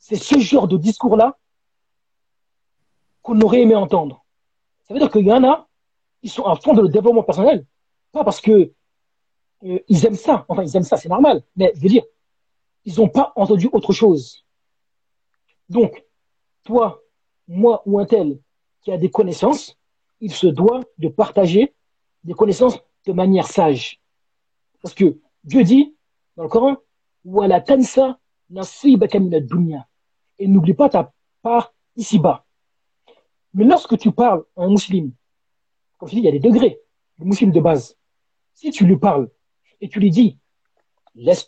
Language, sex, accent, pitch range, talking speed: French, male, French, 180-230 Hz, 160 wpm